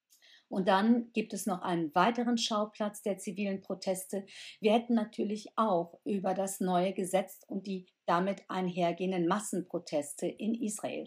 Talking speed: 140 wpm